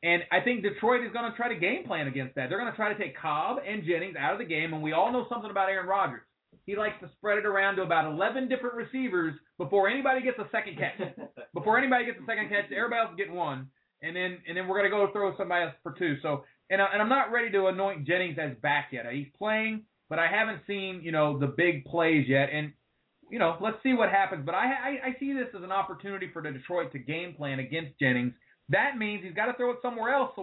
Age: 30-49